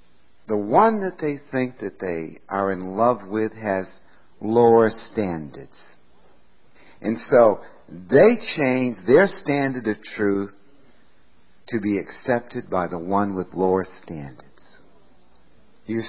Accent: American